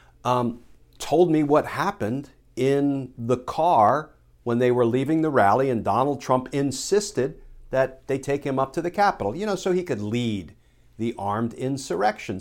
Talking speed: 170 wpm